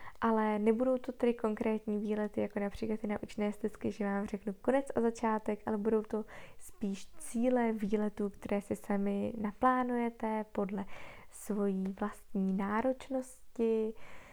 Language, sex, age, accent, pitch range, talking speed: Czech, female, 20-39, native, 205-230 Hz, 135 wpm